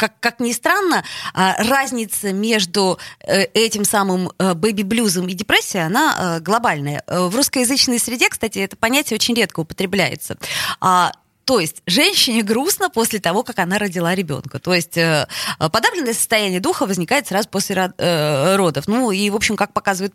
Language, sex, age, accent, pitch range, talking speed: Russian, female, 20-39, native, 175-225 Hz, 140 wpm